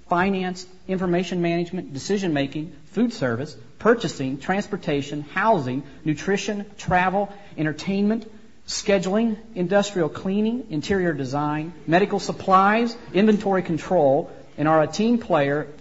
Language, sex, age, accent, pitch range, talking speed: English, male, 40-59, American, 130-175 Hz, 100 wpm